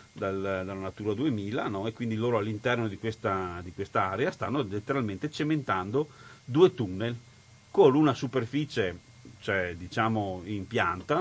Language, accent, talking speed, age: Italian, native, 140 wpm, 40-59